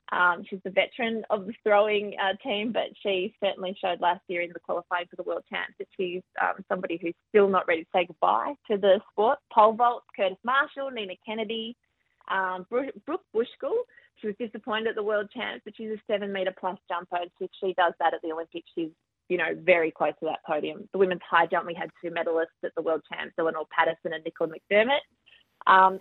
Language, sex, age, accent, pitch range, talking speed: English, female, 20-39, Australian, 170-215 Hz, 210 wpm